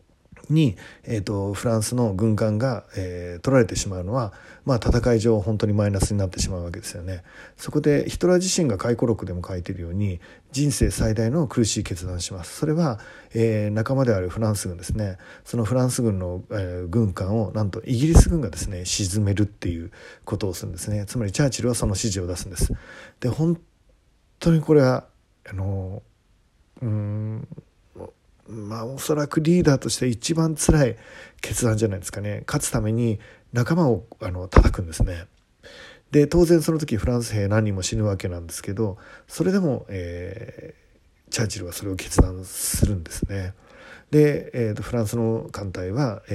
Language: Japanese